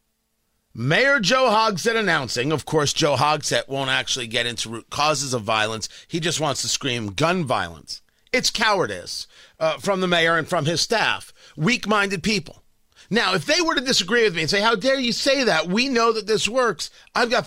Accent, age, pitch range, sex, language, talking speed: American, 40-59, 145-220 Hz, male, English, 195 wpm